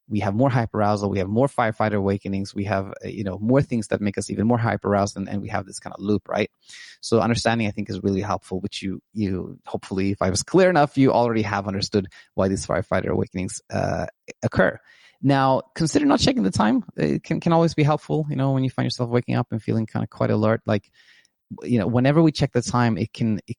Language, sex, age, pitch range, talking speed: English, male, 20-39, 105-130 Hz, 235 wpm